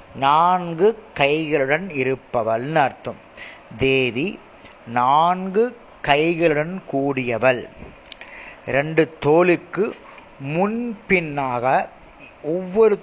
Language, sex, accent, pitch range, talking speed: Tamil, male, native, 130-195 Hz, 55 wpm